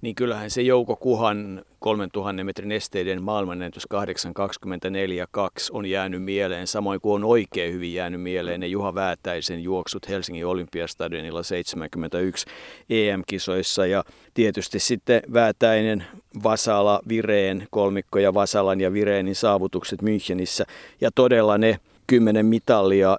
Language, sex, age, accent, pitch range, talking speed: Finnish, male, 50-69, native, 95-125 Hz, 115 wpm